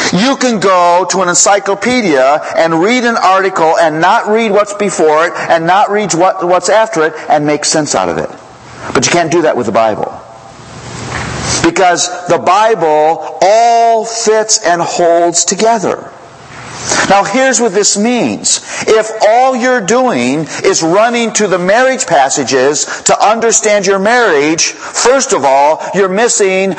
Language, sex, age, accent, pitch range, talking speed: English, male, 50-69, American, 175-235 Hz, 155 wpm